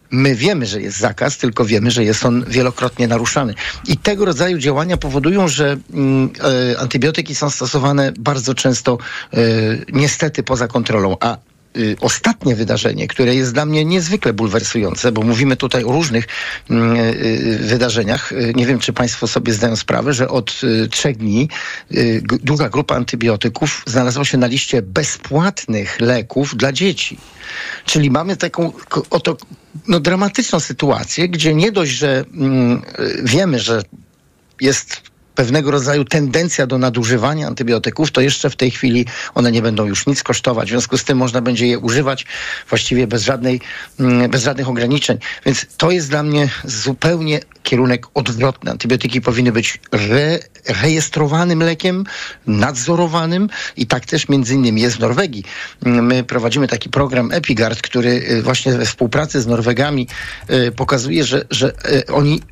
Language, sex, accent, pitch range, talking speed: Polish, male, native, 120-145 Hz, 140 wpm